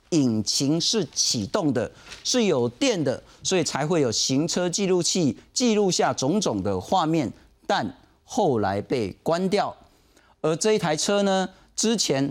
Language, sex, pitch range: Chinese, male, 145-225 Hz